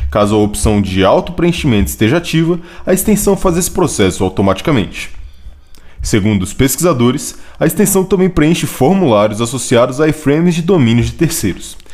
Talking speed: 140 wpm